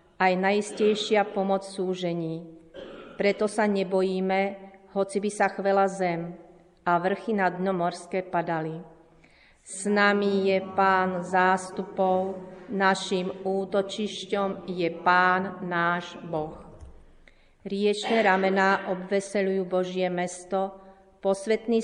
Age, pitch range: 40-59, 180-195 Hz